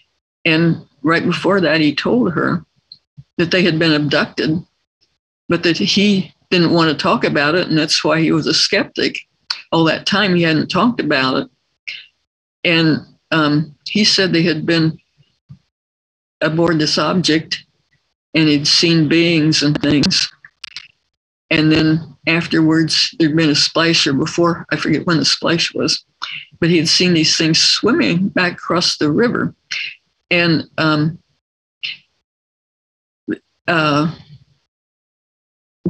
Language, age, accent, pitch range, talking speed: English, 60-79, American, 150-170 Hz, 135 wpm